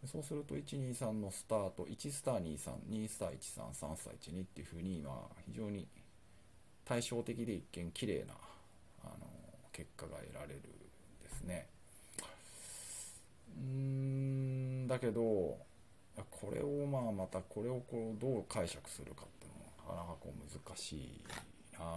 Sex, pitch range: male, 85-115 Hz